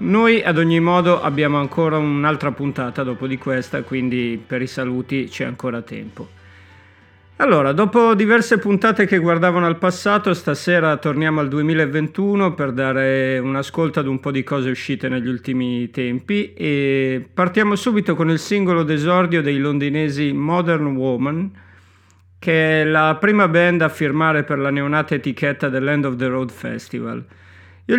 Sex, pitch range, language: male, 130-175 Hz, Italian